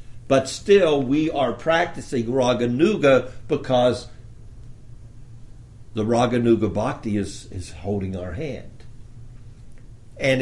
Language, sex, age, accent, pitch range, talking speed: English, male, 60-79, American, 105-120 Hz, 90 wpm